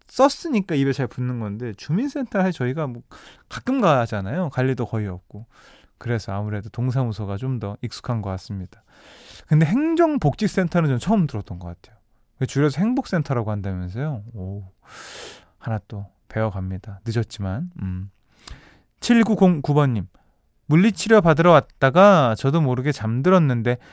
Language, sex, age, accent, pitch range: Korean, male, 20-39, native, 110-175 Hz